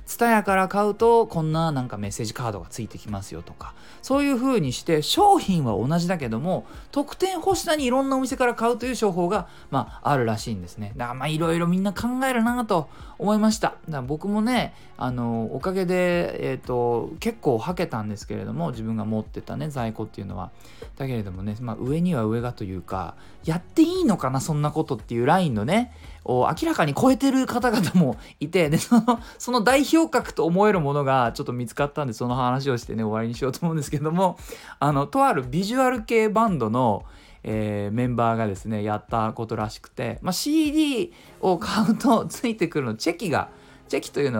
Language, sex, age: Japanese, male, 20-39